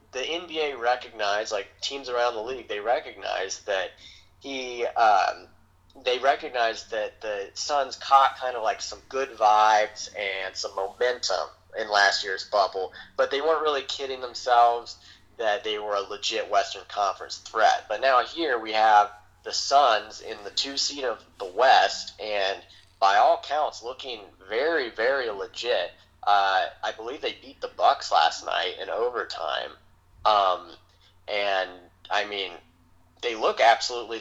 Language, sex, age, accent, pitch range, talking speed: English, male, 30-49, American, 100-125 Hz, 150 wpm